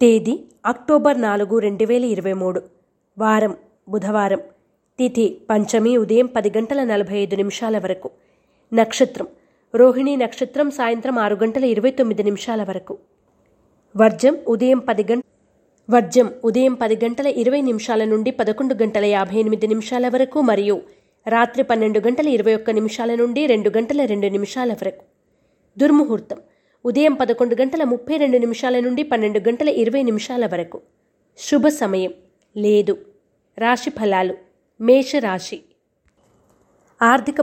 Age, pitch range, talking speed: 20-39, 215-260 Hz, 115 wpm